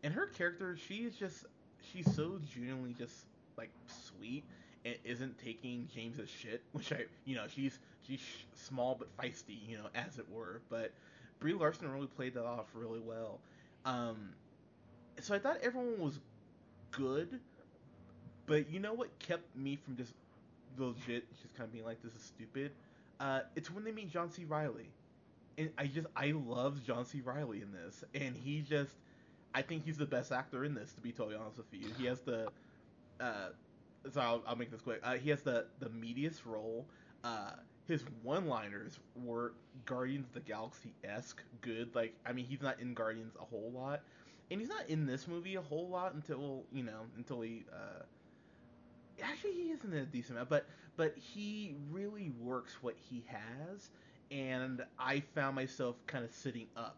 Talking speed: 180 wpm